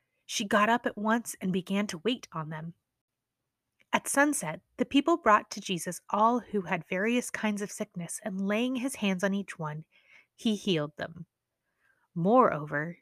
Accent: American